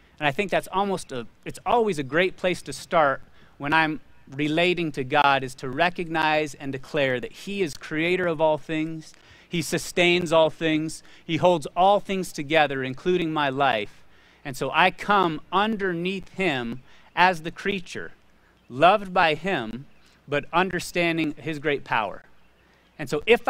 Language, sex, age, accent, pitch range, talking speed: English, male, 30-49, American, 150-195 Hz, 160 wpm